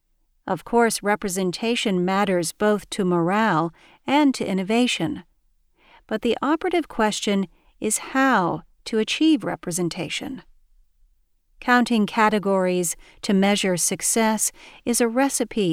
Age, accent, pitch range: 40-59, American, 190-240 Hz